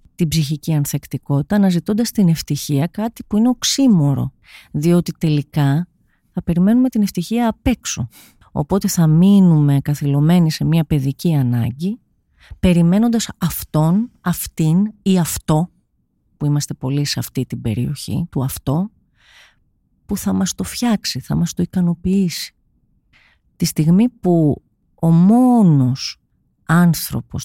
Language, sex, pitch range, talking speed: Greek, female, 140-185 Hz, 120 wpm